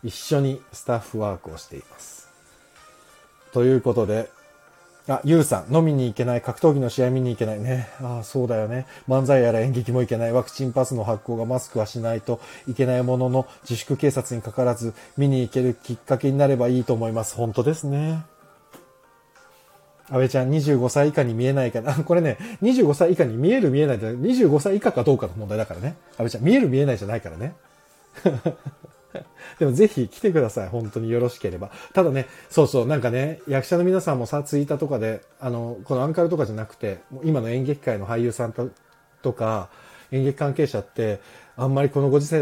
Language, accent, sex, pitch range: Japanese, native, male, 115-145 Hz